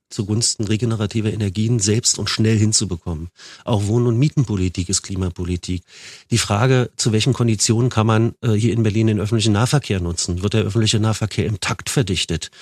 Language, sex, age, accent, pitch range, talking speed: German, male, 40-59, German, 100-120 Hz, 170 wpm